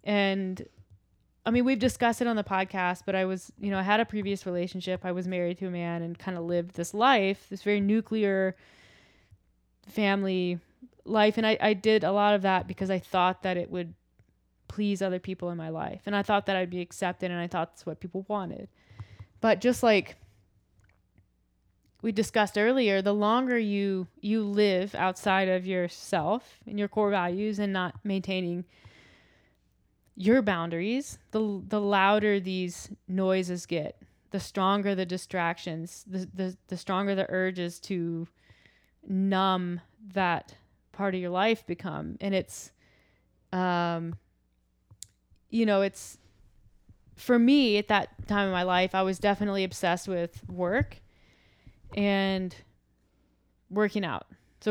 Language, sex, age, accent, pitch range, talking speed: English, female, 20-39, American, 175-205 Hz, 155 wpm